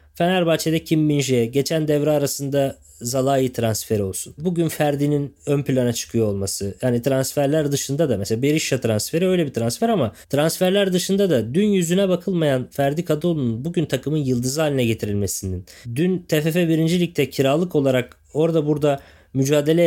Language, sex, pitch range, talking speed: Turkish, male, 135-170 Hz, 140 wpm